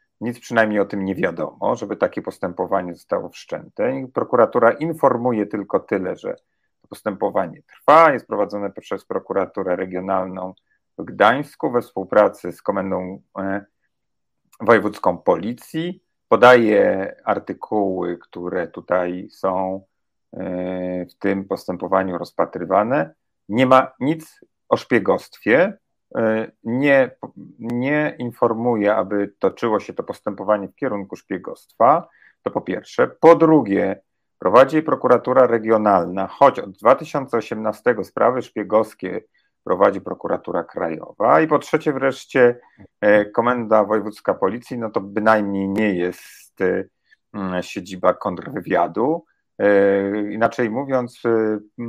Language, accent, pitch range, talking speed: Polish, native, 95-125 Hz, 105 wpm